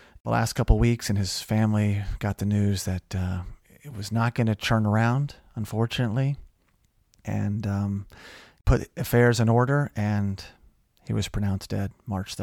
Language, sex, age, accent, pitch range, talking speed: English, male, 30-49, American, 105-130 Hz, 155 wpm